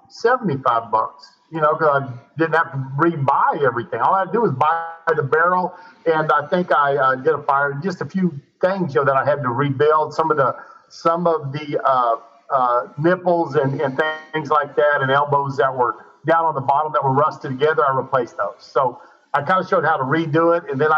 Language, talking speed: English, 225 wpm